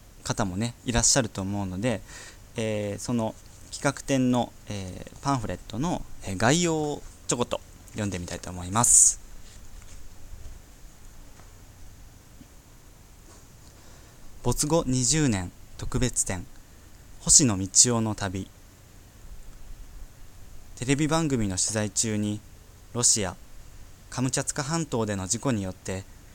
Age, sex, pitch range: 20-39, male, 95-125 Hz